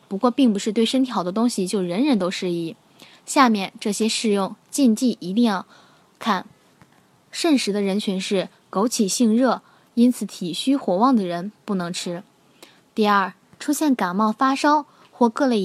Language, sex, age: Chinese, female, 10-29